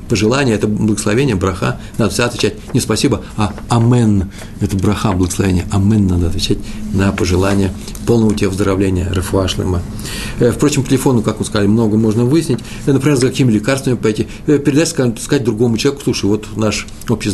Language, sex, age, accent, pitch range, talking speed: Russian, male, 50-69, native, 105-125 Hz, 155 wpm